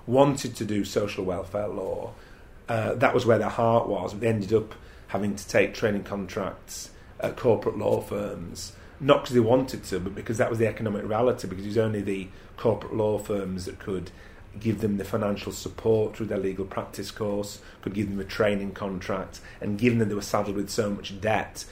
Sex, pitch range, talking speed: male, 95-110 Hz, 200 wpm